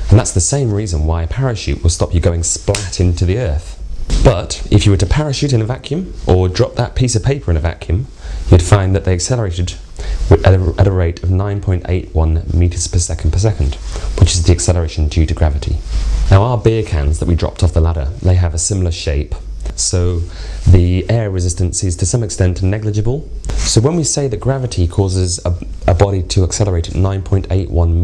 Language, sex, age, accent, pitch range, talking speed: English, male, 30-49, British, 85-100 Hz, 200 wpm